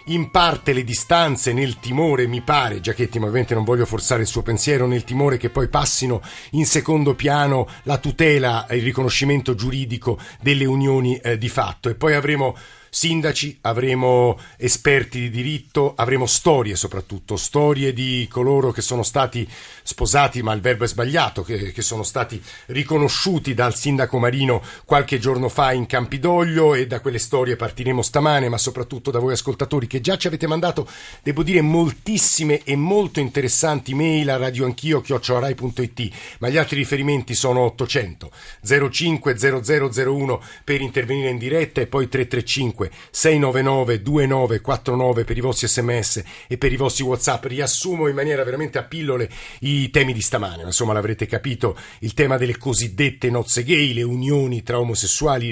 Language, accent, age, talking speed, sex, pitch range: Italian, native, 50-69, 155 wpm, male, 120-145 Hz